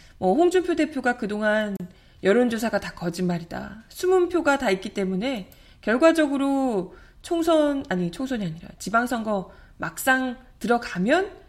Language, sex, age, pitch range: Korean, female, 20-39, 185-275 Hz